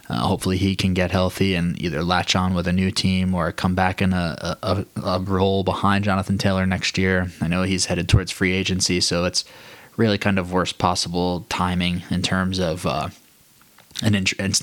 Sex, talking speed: male, 200 wpm